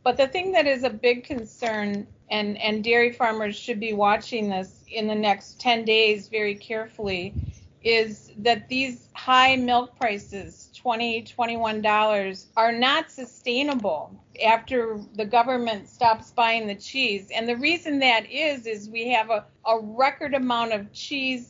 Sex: female